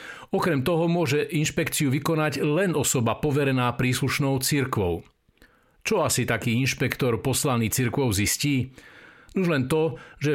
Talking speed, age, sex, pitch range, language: 120 wpm, 50-69, male, 120-150 Hz, Slovak